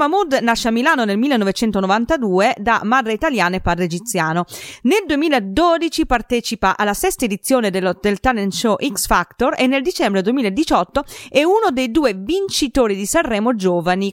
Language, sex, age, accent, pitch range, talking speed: Italian, female, 30-49, native, 195-280 Hz, 150 wpm